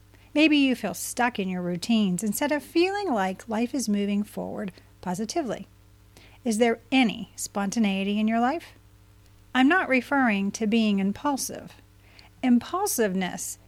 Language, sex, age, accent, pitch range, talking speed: English, female, 40-59, American, 185-265 Hz, 130 wpm